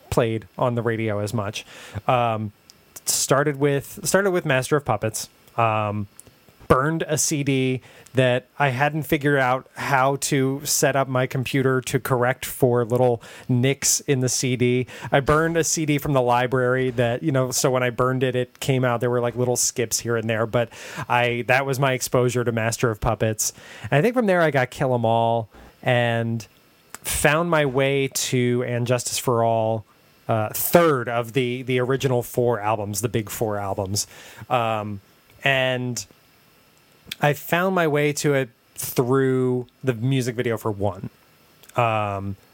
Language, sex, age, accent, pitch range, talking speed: English, male, 30-49, American, 120-135 Hz, 165 wpm